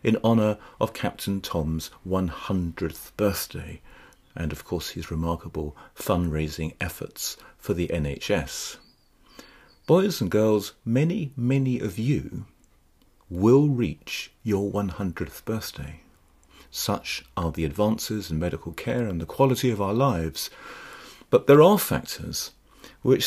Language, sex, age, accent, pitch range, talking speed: English, male, 40-59, British, 85-125 Hz, 120 wpm